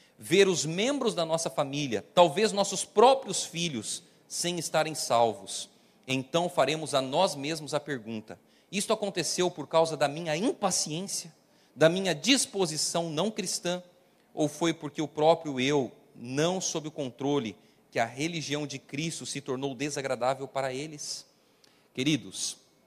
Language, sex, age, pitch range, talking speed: Portuguese, male, 40-59, 140-190 Hz, 140 wpm